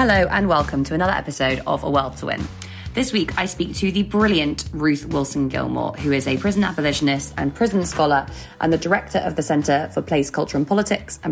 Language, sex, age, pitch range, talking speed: English, female, 20-39, 135-160 Hz, 215 wpm